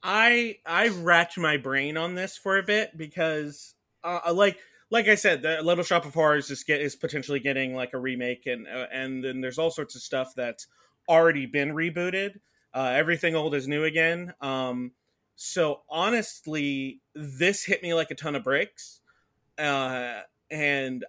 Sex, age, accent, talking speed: male, 30-49, American, 170 wpm